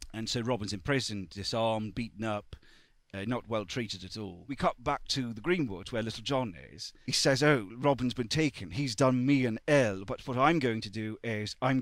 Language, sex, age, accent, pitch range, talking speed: English, male, 40-59, British, 110-130 Hz, 210 wpm